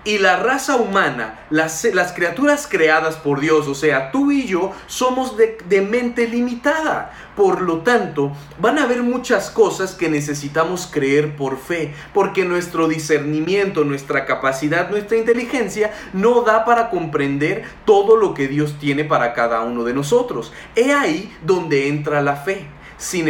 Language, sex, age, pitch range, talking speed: Spanish, male, 30-49, 150-230 Hz, 155 wpm